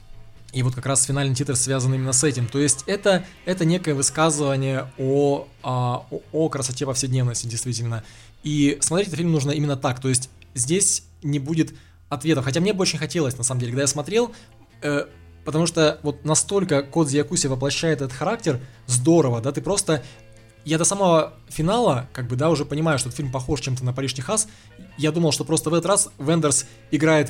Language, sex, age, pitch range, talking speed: Russian, male, 20-39, 130-160 Hz, 185 wpm